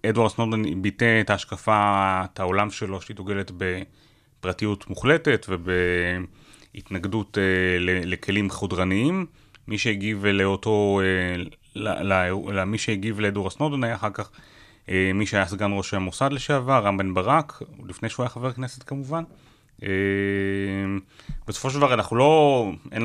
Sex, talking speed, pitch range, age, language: male, 135 wpm, 100-120 Hz, 30-49, Hebrew